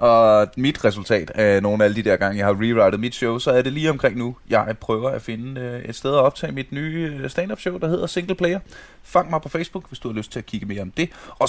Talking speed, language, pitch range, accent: 265 wpm, Danish, 115-165 Hz, native